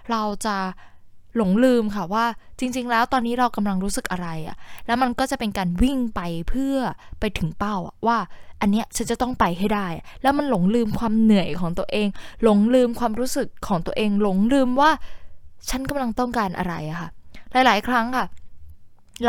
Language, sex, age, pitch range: Thai, female, 10-29, 195-250 Hz